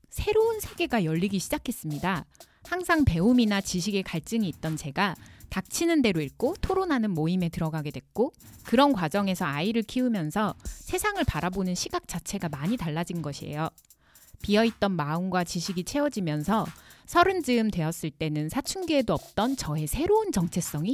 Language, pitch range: Korean, 165-245 Hz